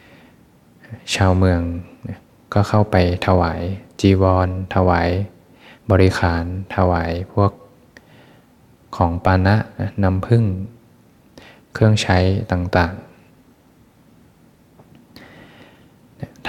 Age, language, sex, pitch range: 20-39, Thai, male, 90-100 Hz